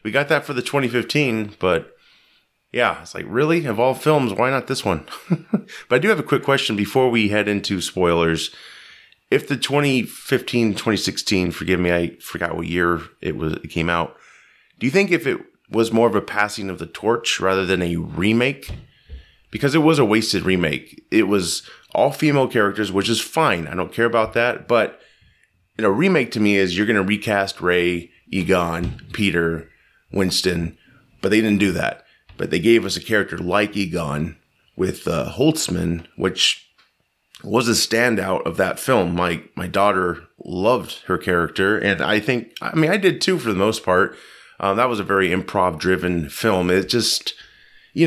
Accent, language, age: American, English, 30-49